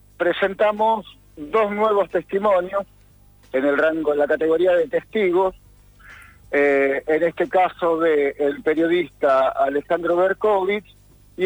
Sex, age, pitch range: male, 50-69, 145-200 Hz